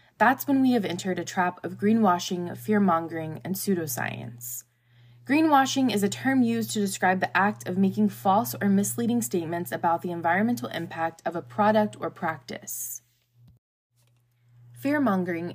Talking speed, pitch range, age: 145 wpm, 155-215 Hz, 20-39